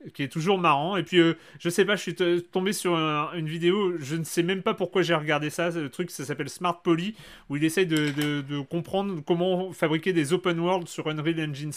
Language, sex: French, male